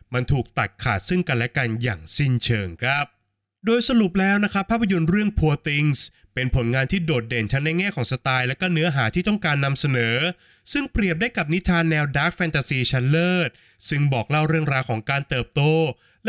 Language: Thai